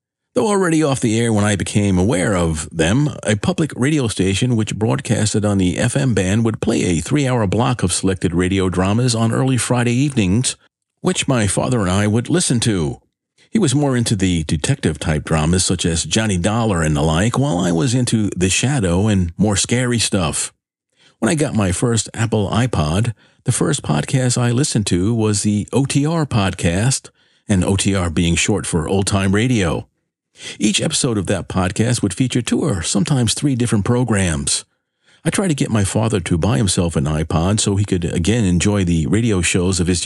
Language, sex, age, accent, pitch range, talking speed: English, male, 50-69, American, 95-125 Hz, 185 wpm